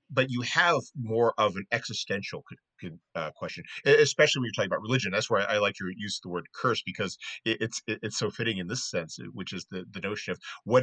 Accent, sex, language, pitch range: American, male, English, 100-130 Hz